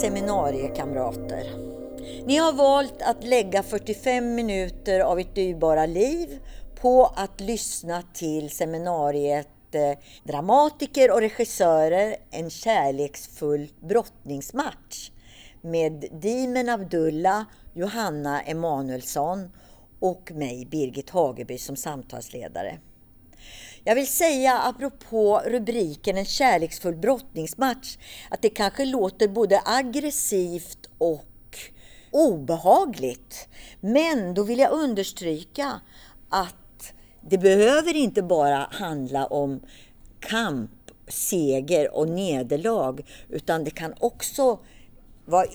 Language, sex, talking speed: Swedish, female, 95 wpm